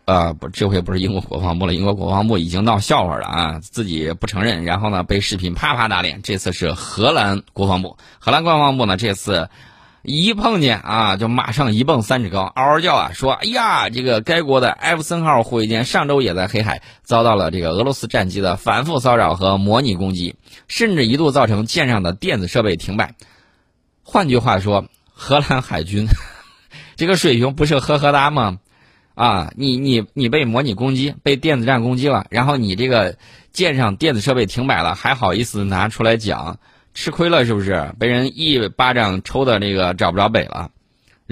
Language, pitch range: Chinese, 100-135 Hz